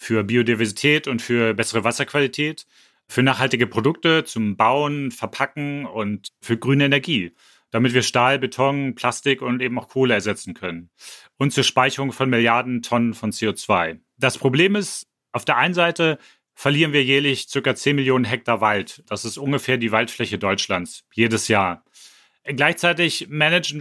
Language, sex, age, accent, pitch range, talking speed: German, male, 30-49, German, 115-140 Hz, 150 wpm